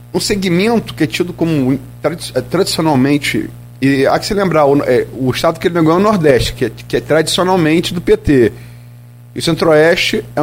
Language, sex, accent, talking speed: Portuguese, male, Brazilian, 190 wpm